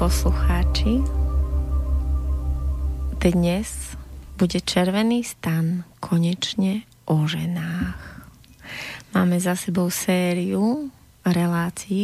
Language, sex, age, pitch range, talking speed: Slovak, female, 20-39, 165-195 Hz, 65 wpm